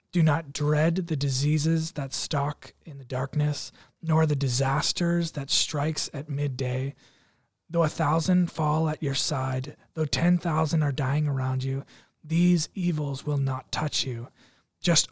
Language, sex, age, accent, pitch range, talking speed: English, male, 20-39, American, 135-160 Hz, 145 wpm